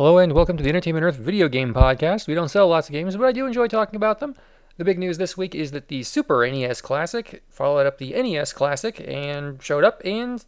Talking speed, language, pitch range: 245 wpm, English, 140-190 Hz